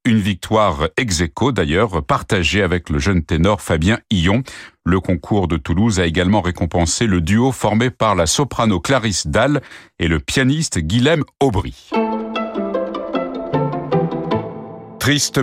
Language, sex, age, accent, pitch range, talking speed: French, male, 50-69, French, 90-125 Hz, 130 wpm